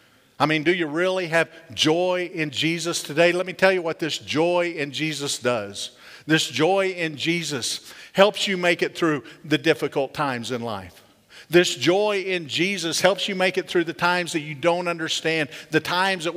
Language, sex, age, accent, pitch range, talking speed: English, male, 50-69, American, 125-175 Hz, 190 wpm